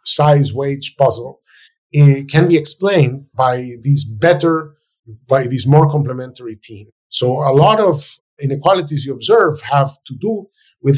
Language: English